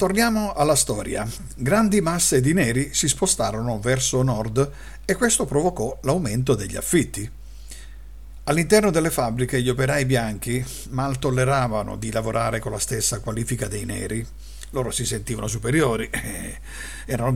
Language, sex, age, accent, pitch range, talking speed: Italian, male, 50-69, native, 110-145 Hz, 130 wpm